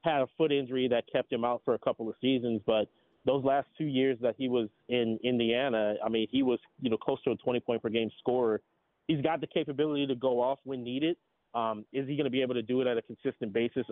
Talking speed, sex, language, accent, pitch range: 245 wpm, male, English, American, 115-135 Hz